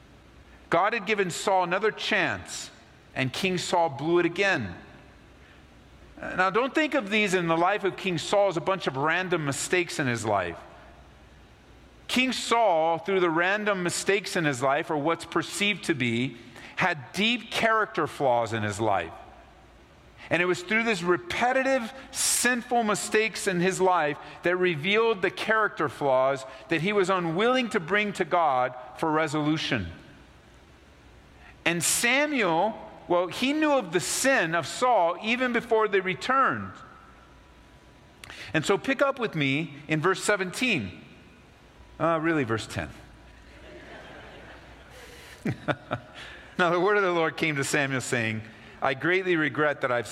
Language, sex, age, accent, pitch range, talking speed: English, male, 50-69, American, 125-195 Hz, 145 wpm